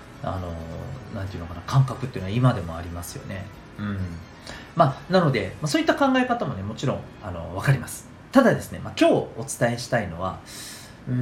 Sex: male